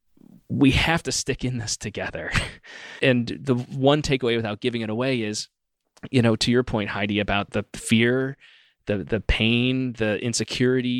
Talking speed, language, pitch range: 165 wpm, English, 105-130 Hz